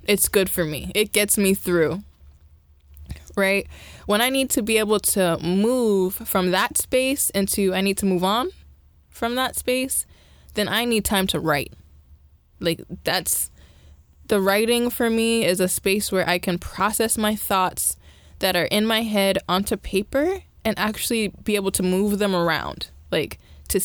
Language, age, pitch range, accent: English, 20-39, 170-230 Hz, American